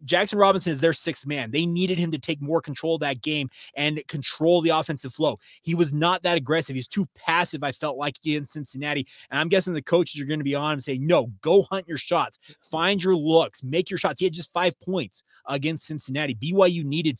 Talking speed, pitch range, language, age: 235 wpm, 150-175 Hz, English, 30-49